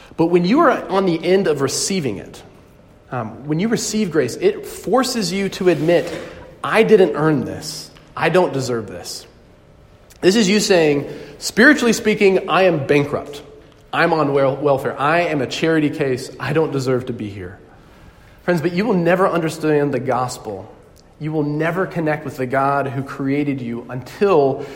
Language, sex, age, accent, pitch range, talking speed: English, male, 40-59, American, 135-180 Hz, 170 wpm